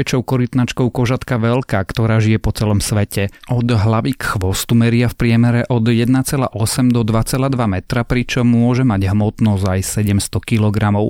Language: Slovak